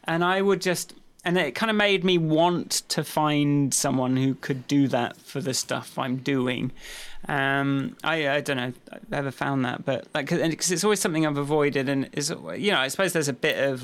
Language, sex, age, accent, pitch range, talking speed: English, male, 30-49, British, 140-200 Hz, 225 wpm